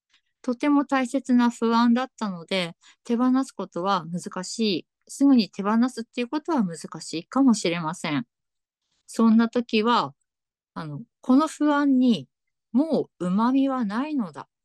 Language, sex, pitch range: Japanese, female, 175-245 Hz